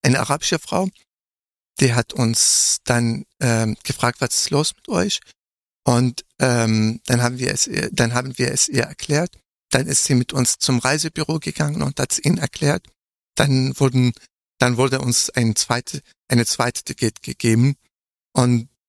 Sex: male